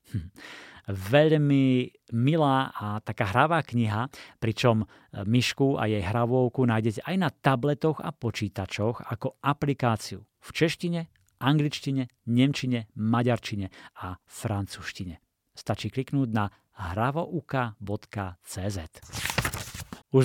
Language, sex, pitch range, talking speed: Slovak, male, 110-140 Hz, 95 wpm